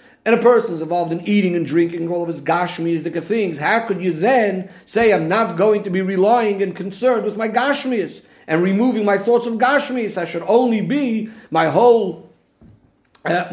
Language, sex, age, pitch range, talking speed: English, male, 50-69, 175-220 Hz, 195 wpm